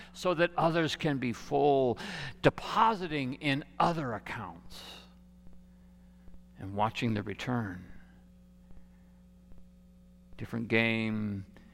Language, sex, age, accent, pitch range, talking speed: English, male, 60-79, American, 95-150 Hz, 80 wpm